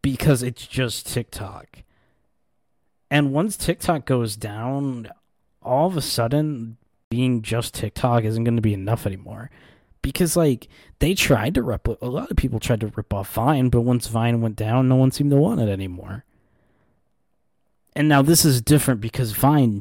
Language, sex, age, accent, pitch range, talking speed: English, male, 20-39, American, 105-135 Hz, 165 wpm